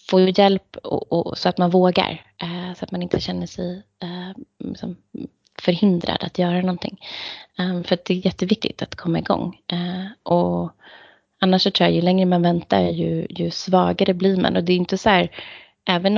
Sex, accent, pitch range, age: female, native, 160-185 Hz, 20-39